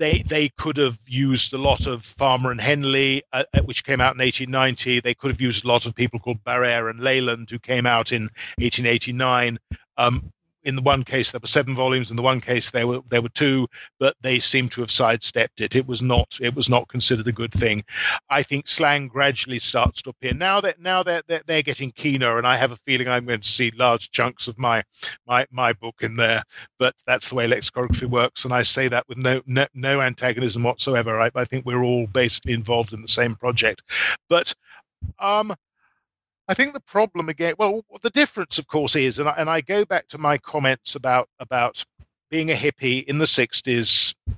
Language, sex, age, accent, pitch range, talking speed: English, male, 50-69, British, 120-140 Hz, 215 wpm